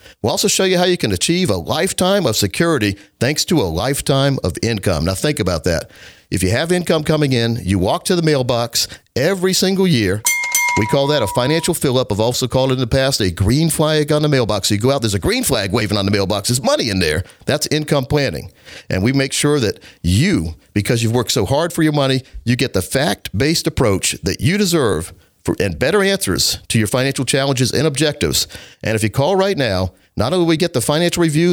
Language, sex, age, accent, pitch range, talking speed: English, male, 50-69, American, 105-160 Hz, 225 wpm